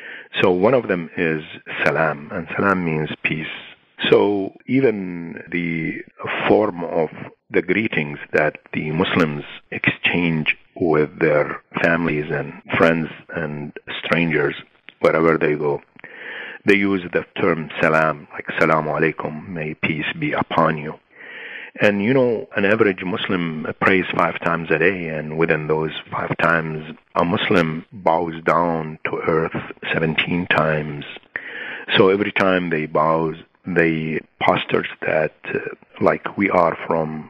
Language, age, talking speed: English, 50-69, 130 wpm